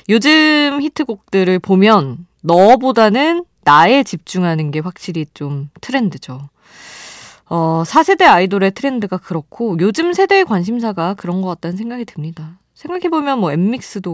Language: Korean